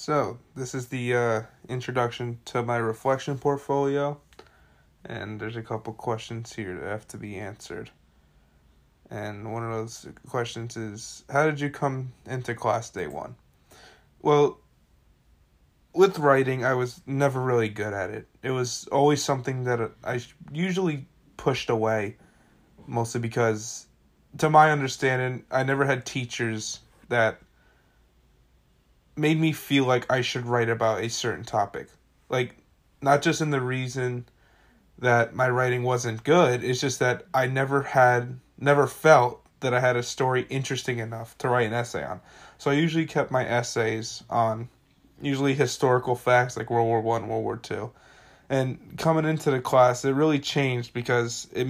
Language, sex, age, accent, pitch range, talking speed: English, male, 20-39, American, 115-140 Hz, 155 wpm